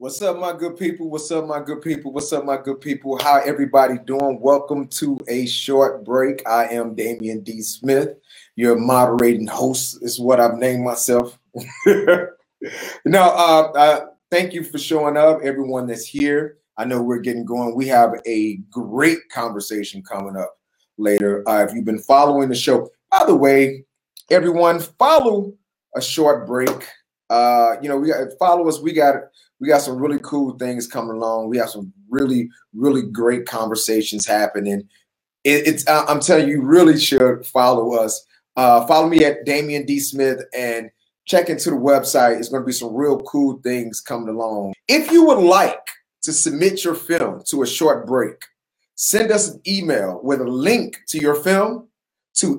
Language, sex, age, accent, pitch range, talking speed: English, male, 30-49, American, 120-160 Hz, 175 wpm